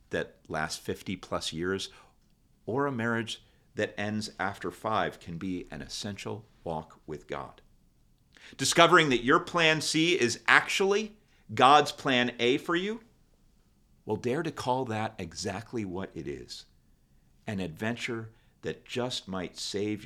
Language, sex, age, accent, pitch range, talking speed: English, male, 50-69, American, 90-125 Hz, 140 wpm